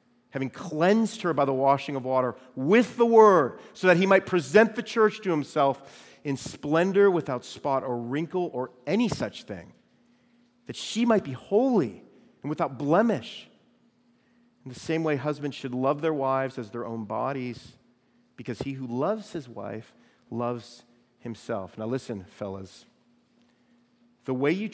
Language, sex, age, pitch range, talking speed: English, male, 40-59, 120-200 Hz, 160 wpm